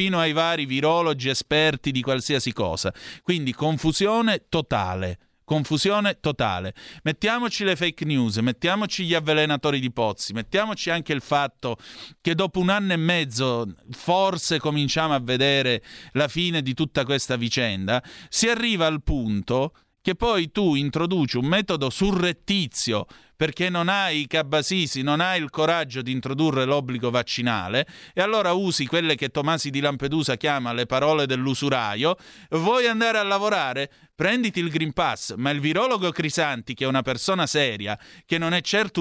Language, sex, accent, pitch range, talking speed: Italian, male, native, 125-175 Hz, 150 wpm